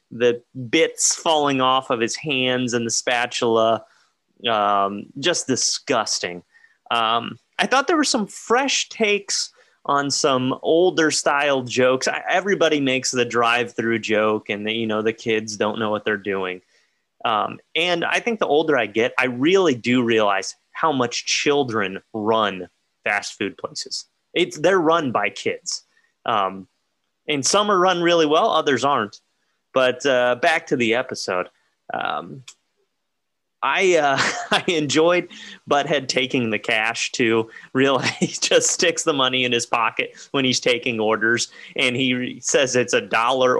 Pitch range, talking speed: 115-160 Hz, 155 wpm